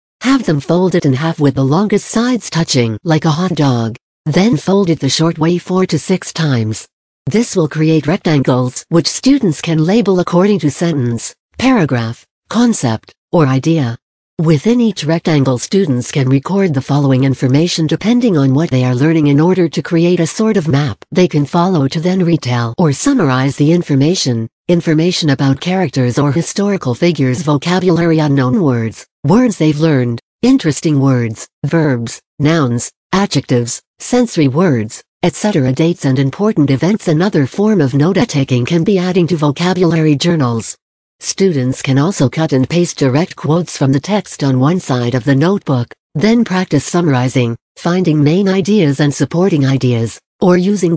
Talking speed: 160 wpm